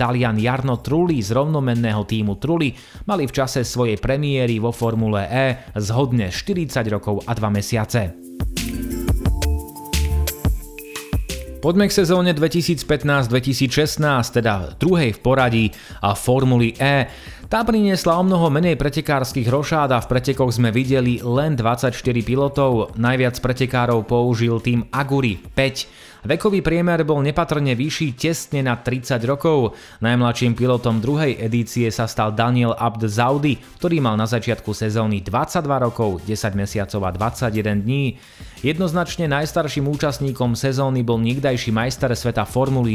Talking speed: 130 wpm